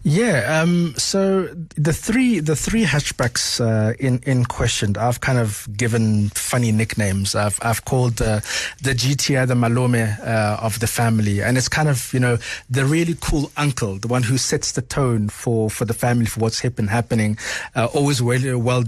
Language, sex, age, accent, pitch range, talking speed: English, male, 30-49, South African, 115-140 Hz, 195 wpm